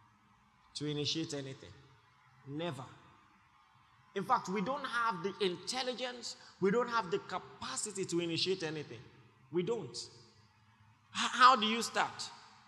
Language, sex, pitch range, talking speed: English, male, 130-190 Hz, 125 wpm